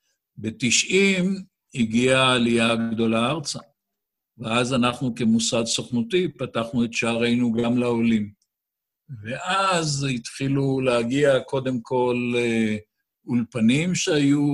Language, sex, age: Hebrew, male, 60-79